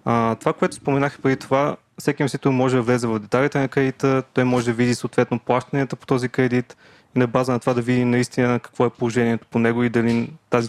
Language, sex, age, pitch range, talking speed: Bulgarian, male, 20-39, 115-135 Hz, 230 wpm